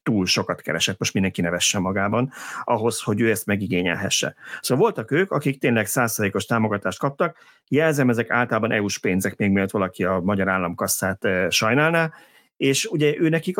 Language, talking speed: Hungarian, 155 wpm